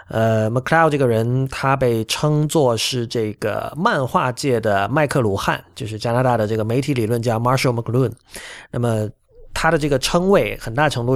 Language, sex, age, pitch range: Chinese, male, 30-49, 115-140 Hz